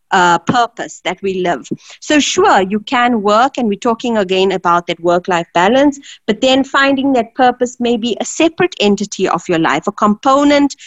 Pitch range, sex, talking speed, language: 200-265 Hz, female, 180 wpm, English